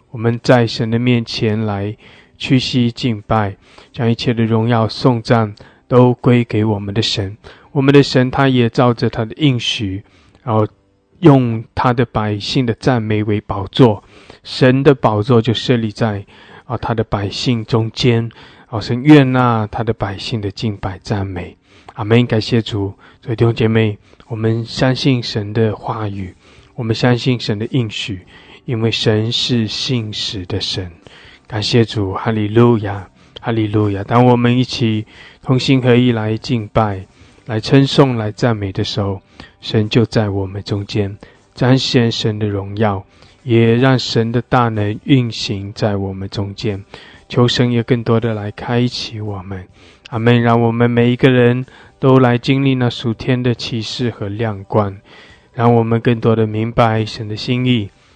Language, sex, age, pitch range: English, male, 20-39, 105-125 Hz